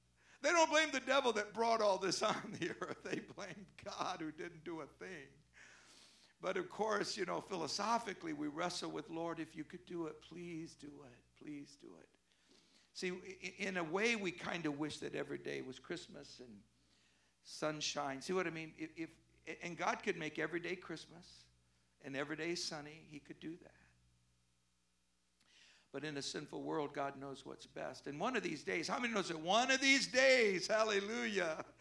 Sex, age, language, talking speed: male, 60-79, English, 185 wpm